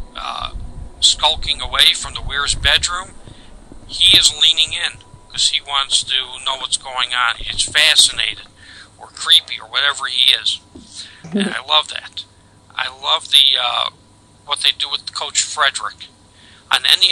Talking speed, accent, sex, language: 150 wpm, American, male, English